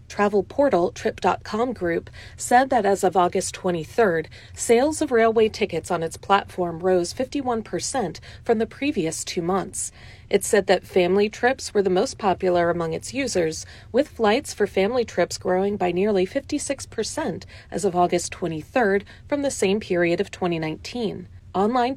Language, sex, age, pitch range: Chinese, female, 30-49, 175-225 Hz